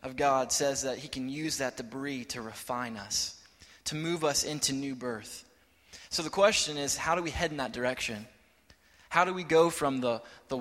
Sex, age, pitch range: male, 20-39, 125-150 Hz